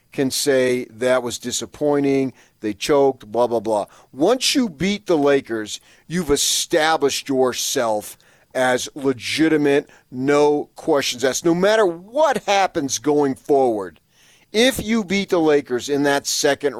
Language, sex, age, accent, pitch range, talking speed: English, male, 40-59, American, 120-160 Hz, 130 wpm